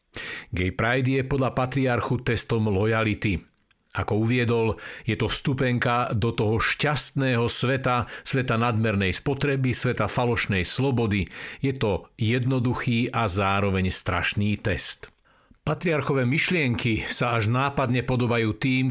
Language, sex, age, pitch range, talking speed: Slovak, male, 50-69, 115-135 Hz, 115 wpm